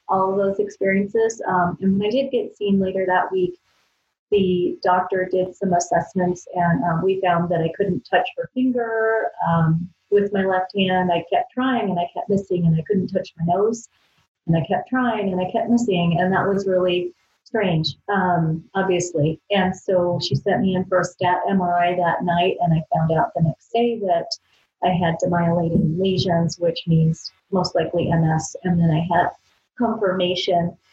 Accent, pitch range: American, 170-195 Hz